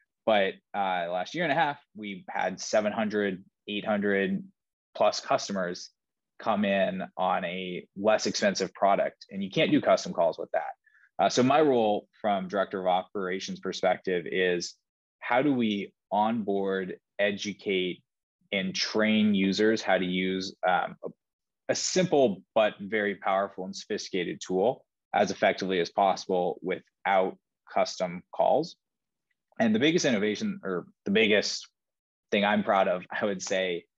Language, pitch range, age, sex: English, 95-130 Hz, 20-39, male